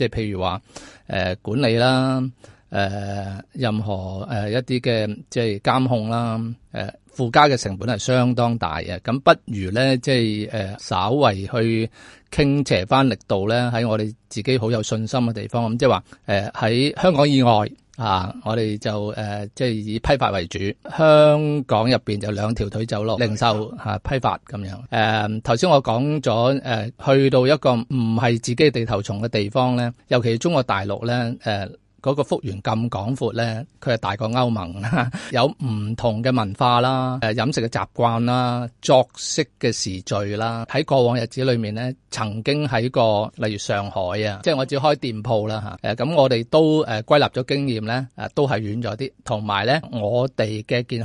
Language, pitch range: Chinese, 110-130 Hz